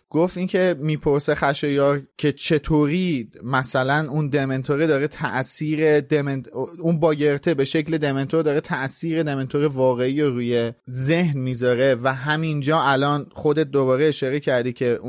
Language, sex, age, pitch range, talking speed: Persian, male, 30-49, 135-170 Hz, 125 wpm